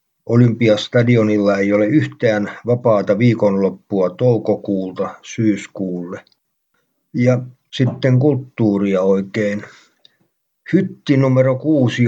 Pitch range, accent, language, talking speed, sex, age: 105-120 Hz, native, Finnish, 75 wpm, male, 50-69